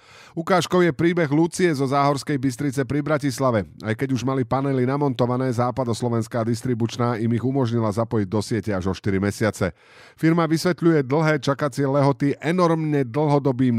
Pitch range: 105-145 Hz